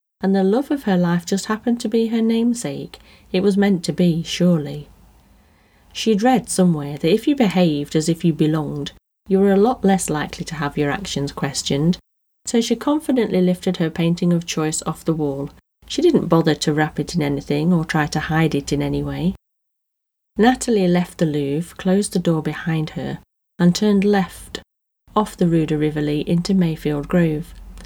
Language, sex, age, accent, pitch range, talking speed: English, female, 30-49, British, 155-200 Hz, 185 wpm